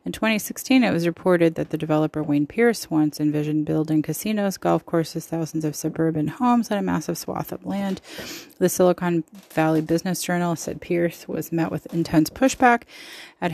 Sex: female